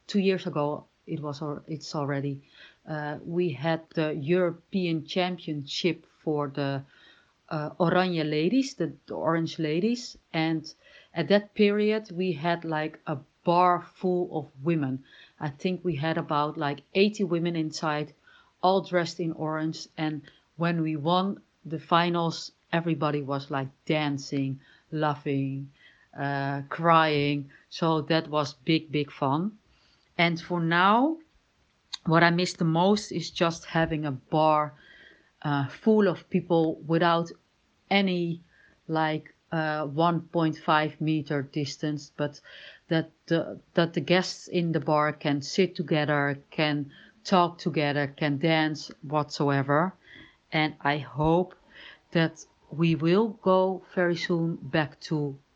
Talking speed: 130 wpm